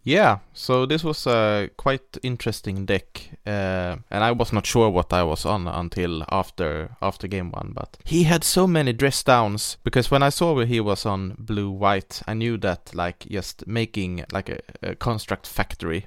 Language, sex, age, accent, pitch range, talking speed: English, male, 20-39, Norwegian, 95-115 Hz, 185 wpm